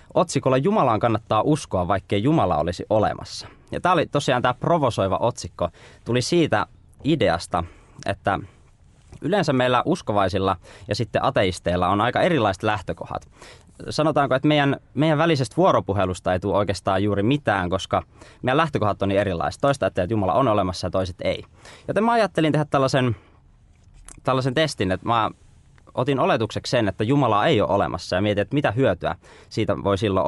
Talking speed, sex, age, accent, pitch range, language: 160 wpm, male, 20-39, native, 95-135 Hz, Finnish